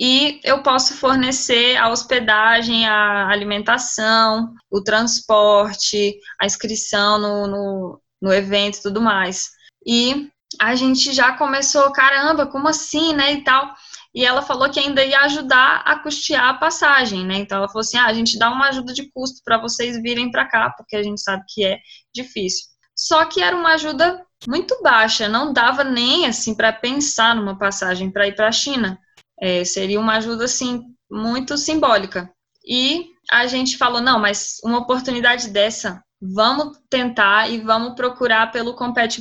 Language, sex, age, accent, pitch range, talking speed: English, female, 10-29, Brazilian, 215-275 Hz, 165 wpm